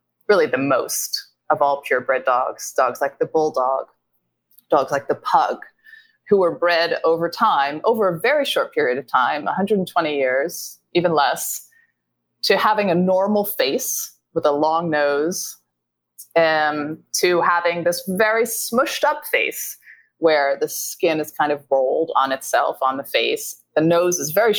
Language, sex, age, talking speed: English, female, 30-49, 155 wpm